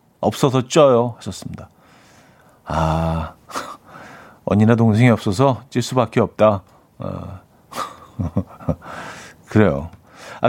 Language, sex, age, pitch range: Korean, male, 40-59, 105-155 Hz